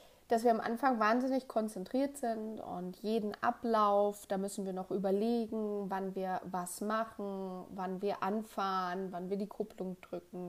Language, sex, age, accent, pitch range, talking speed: German, female, 30-49, German, 190-225 Hz, 155 wpm